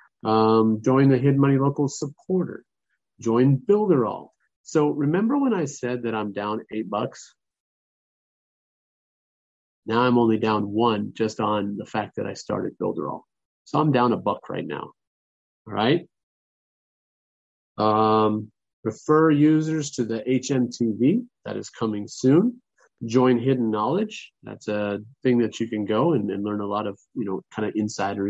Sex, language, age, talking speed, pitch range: male, English, 30-49, 155 wpm, 110-135 Hz